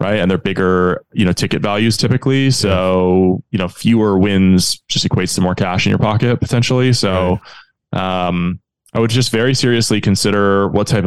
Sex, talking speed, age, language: male, 180 wpm, 20-39, English